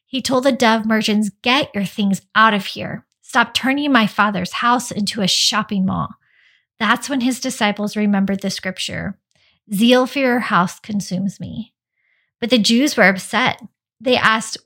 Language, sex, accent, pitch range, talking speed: English, female, American, 200-240 Hz, 165 wpm